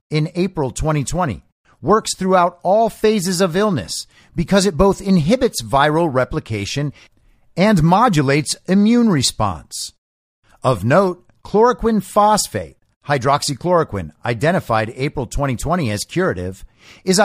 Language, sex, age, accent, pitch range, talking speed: English, male, 50-69, American, 120-185 Hz, 105 wpm